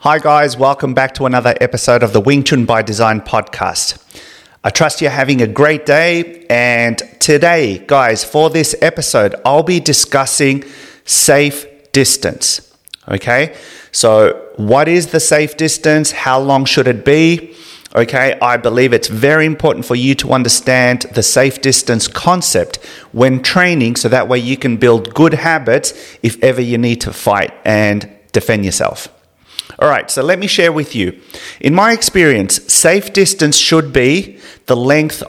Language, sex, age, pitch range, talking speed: English, male, 30-49, 125-165 Hz, 160 wpm